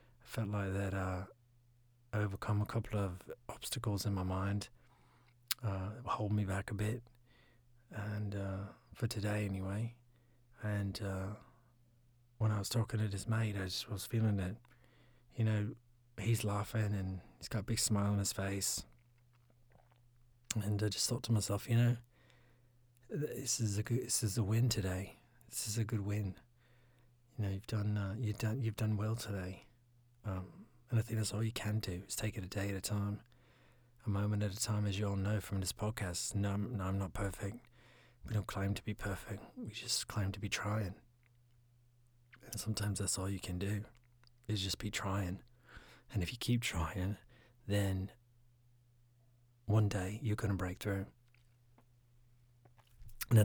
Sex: male